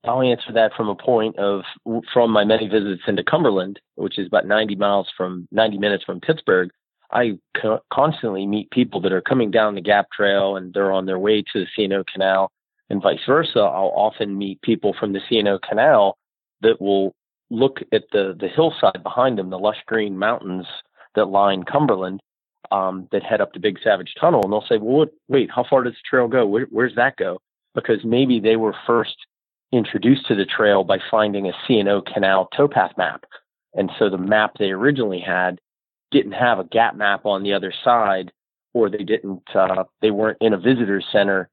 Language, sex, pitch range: English, male, 95-110 Hz